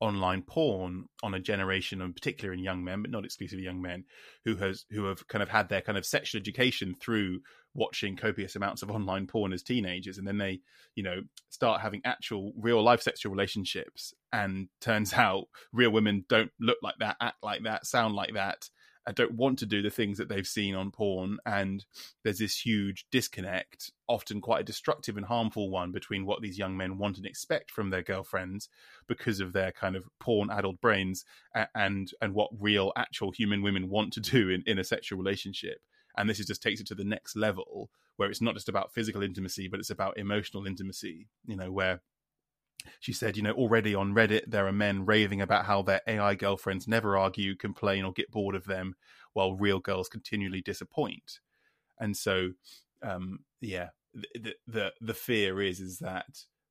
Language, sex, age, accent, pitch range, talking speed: English, male, 20-39, British, 95-110 Hz, 195 wpm